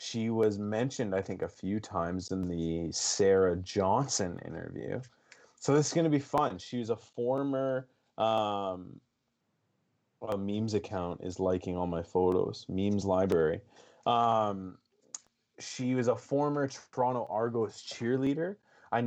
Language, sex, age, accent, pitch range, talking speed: English, male, 30-49, American, 100-120 Hz, 140 wpm